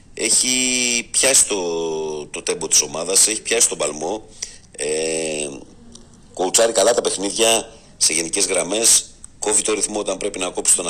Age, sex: 50-69, male